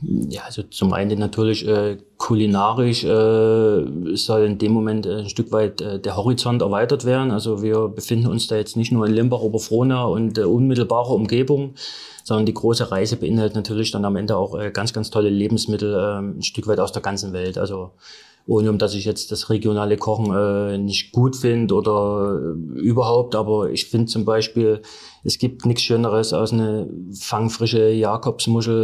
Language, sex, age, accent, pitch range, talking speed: German, male, 30-49, German, 105-120 Hz, 185 wpm